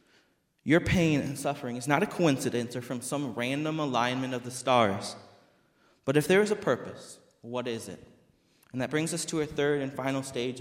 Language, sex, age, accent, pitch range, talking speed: English, male, 20-39, American, 120-160 Hz, 200 wpm